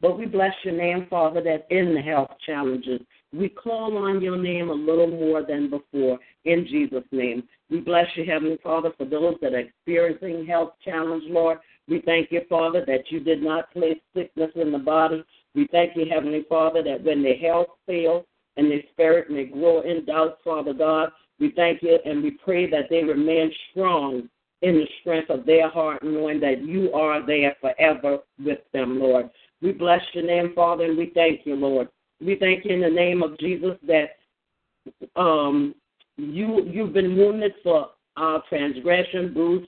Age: 50-69